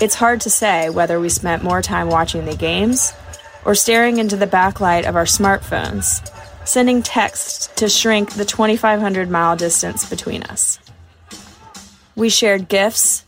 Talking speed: 145 wpm